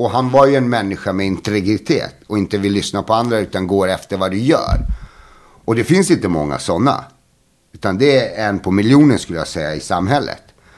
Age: 60-79